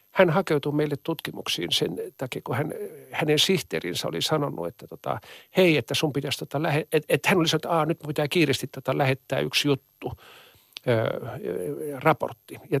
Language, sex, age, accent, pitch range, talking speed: Finnish, male, 50-69, native, 145-185 Hz, 180 wpm